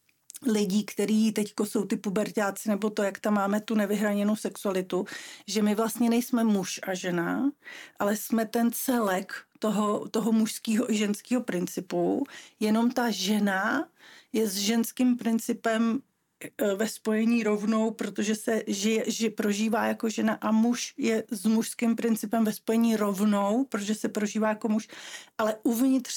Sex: female